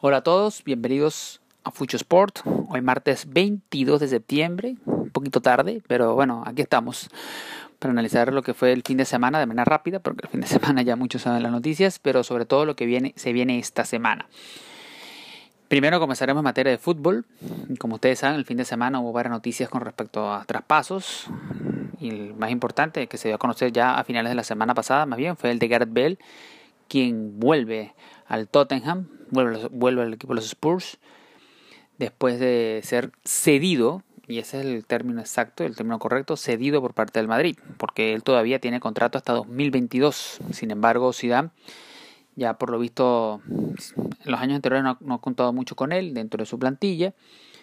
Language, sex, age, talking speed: Spanish, male, 30-49, 190 wpm